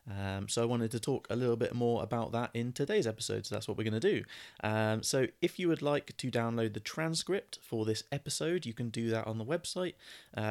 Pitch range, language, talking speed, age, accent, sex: 105-120 Hz, English, 240 wpm, 20-39, British, male